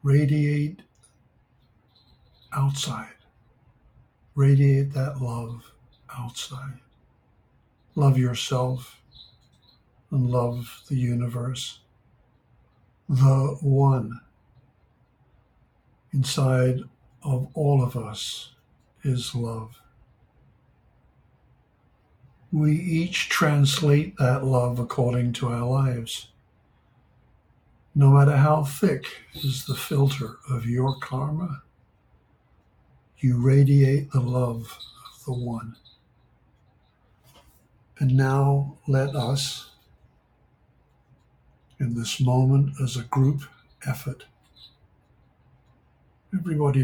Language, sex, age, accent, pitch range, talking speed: English, male, 60-79, American, 120-140 Hz, 75 wpm